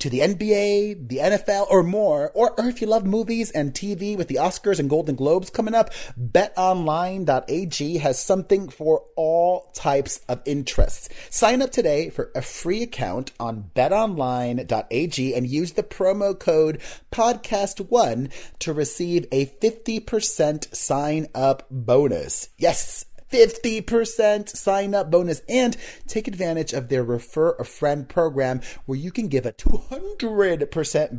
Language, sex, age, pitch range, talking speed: English, male, 30-49, 130-200 Hz, 140 wpm